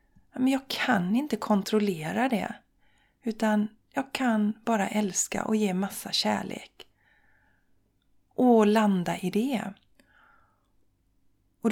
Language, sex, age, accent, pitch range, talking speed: Swedish, female, 30-49, native, 180-220 Hz, 100 wpm